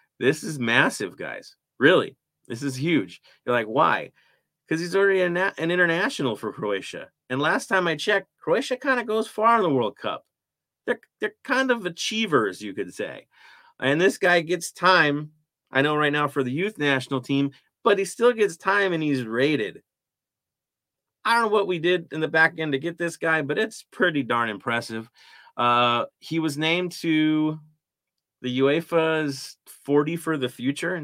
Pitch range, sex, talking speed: 130-175 Hz, male, 180 wpm